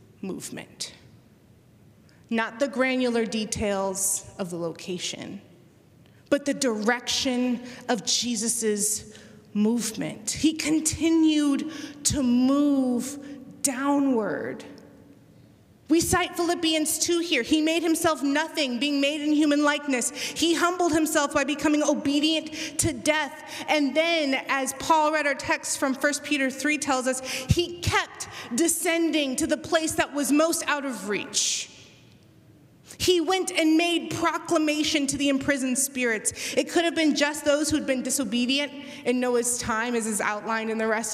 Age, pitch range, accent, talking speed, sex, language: 30-49, 235-300 Hz, American, 135 wpm, female, English